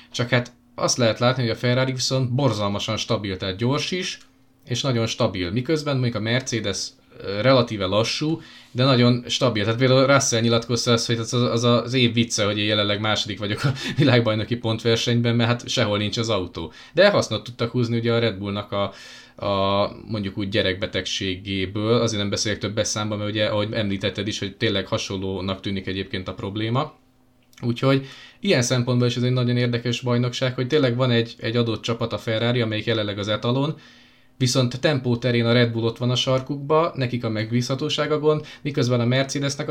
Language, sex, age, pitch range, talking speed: Hungarian, male, 20-39, 105-125 Hz, 180 wpm